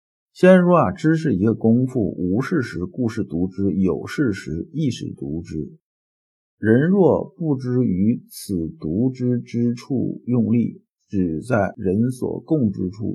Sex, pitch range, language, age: male, 100-135 Hz, Chinese, 50-69